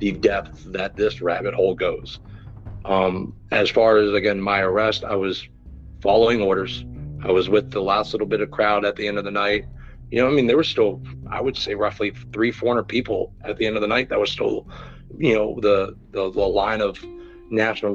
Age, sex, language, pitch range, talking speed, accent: 40-59, male, English, 95-110 Hz, 215 wpm, American